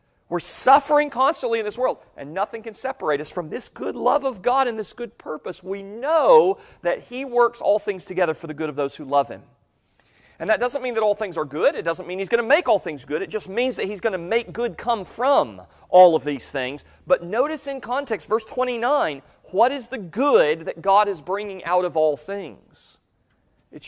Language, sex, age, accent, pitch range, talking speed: English, male, 40-59, American, 155-240 Hz, 225 wpm